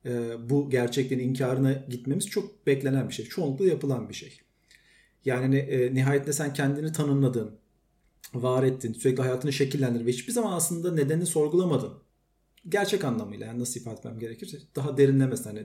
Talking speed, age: 145 wpm, 40-59